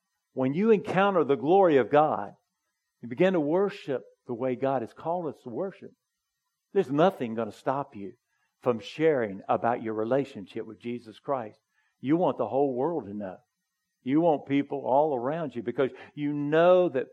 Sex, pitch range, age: male, 125-170 Hz, 50-69